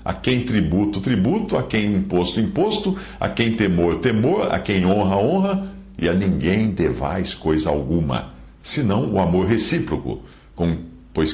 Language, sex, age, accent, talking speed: English, male, 60-79, Brazilian, 145 wpm